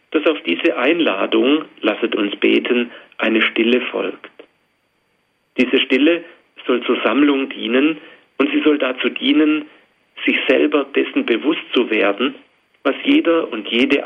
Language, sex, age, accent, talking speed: German, male, 40-59, German, 130 wpm